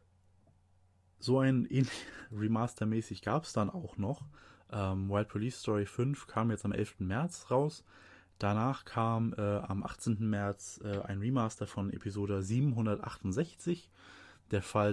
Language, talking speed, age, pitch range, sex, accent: German, 135 wpm, 20-39, 95-115 Hz, male, German